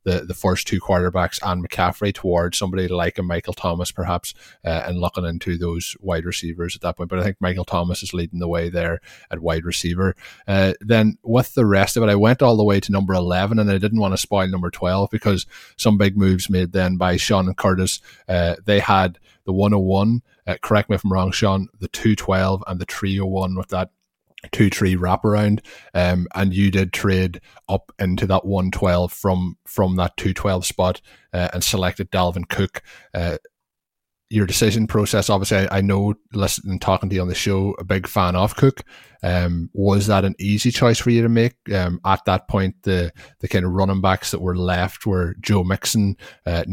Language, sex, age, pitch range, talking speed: English, male, 20-39, 90-100 Hz, 205 wpm